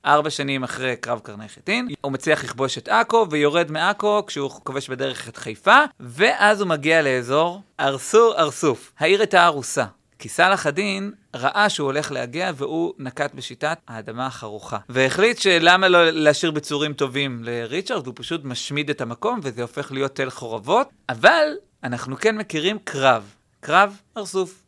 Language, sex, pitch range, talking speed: Hebrew, male, 125-175 Hz, 155 wpm